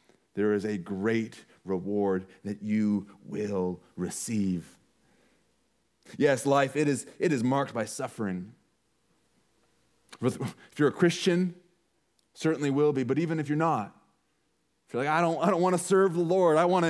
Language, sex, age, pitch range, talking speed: English, male, 30-49, 105-145 Hz, 145 wpm